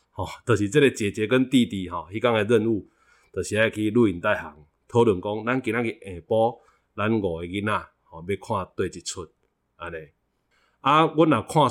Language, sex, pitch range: Chinese, male, 90-115 Hz